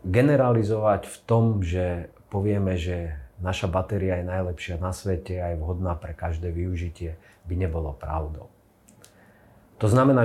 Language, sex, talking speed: Slovak, male, 135 wpm